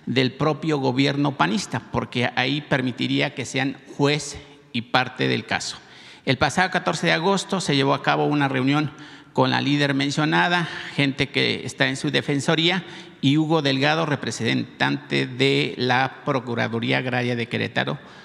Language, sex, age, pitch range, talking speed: Spanish, male, 50-69, 125-150 Hz, 150 wpm